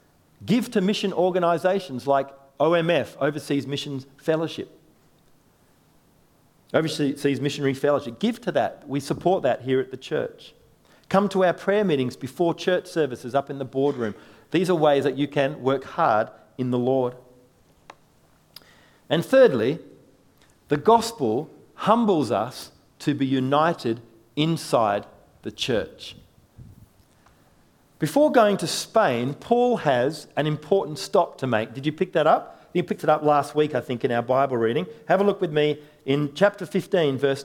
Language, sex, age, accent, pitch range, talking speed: English, male, 40-59, Australian, 135-175 Hz, 150 wpm